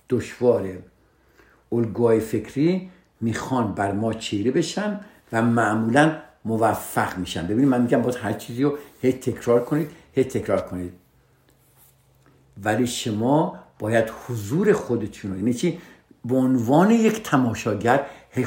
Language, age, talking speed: Persian, 60-79, 120 wpm